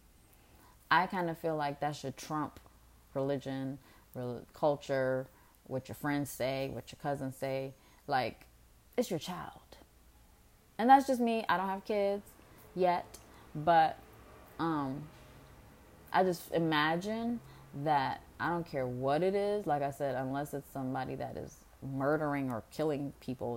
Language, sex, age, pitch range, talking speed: Amharic, female, 20-39, 120-150 Hz, 145 wpm